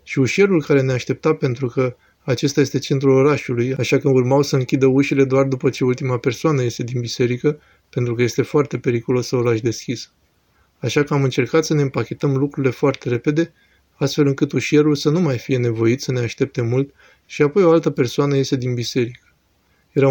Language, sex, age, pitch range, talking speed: Romanian, male, 20-39, 125-145 Hz, 195 wpm